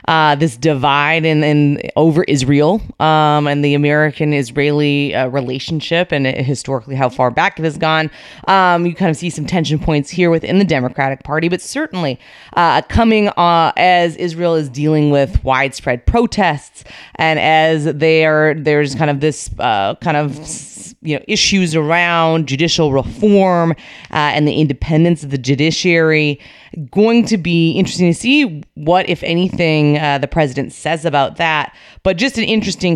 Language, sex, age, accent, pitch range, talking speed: English, female, 30-49, American, 145-180 Hz, 165 wpm